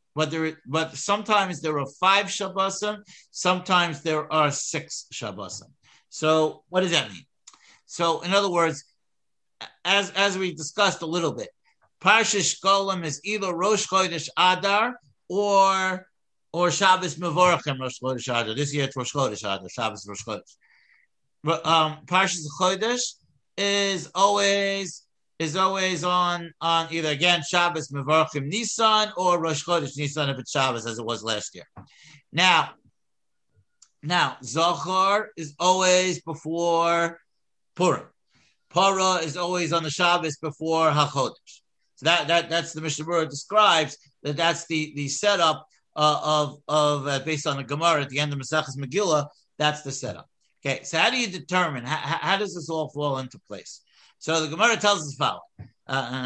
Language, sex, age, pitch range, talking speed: English, male, 50-69, 145-185 Hz, 155 wpm